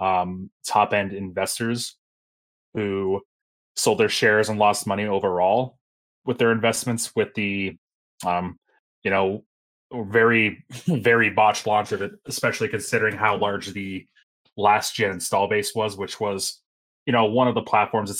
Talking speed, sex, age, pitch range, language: 140 wpm, male, 20-39, 100-115 Hz, English